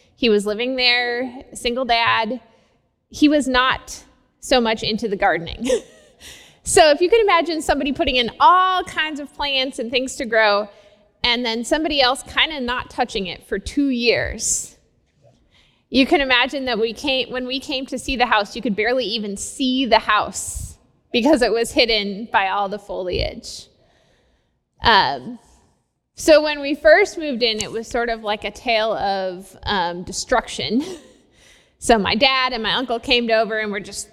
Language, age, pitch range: English, 20-39, 210-265 Hz